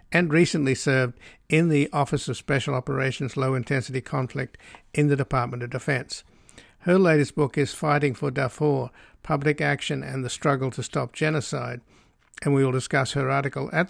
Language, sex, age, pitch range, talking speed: English, male, 60-79, 130-150 Hz, 165 wpm